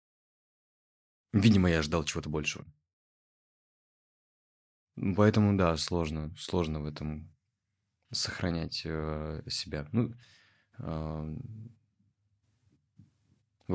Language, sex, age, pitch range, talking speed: Russian, male, 20-39, 80-105 Hz, 65 wpm